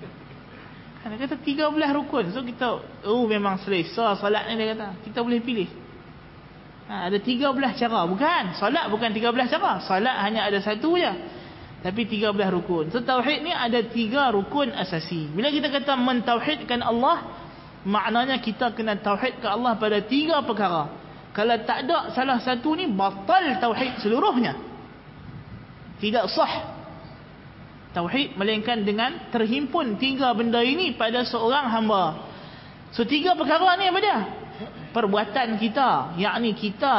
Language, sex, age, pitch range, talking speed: Malay, male, 20-39, 205-265 Hz, 145 wpm